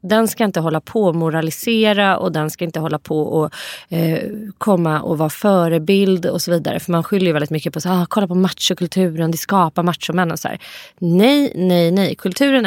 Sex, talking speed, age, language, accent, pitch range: female, 200 wpm, 30-49, Swedish, native, 160-195 Hz